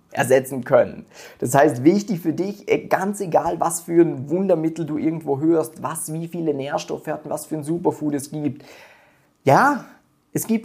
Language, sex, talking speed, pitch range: German, male, 170 wpm, 140-175 Hz